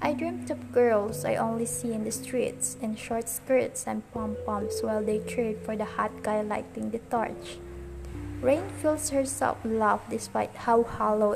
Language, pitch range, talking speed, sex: English, 145-225 Hz, 175 wpm, female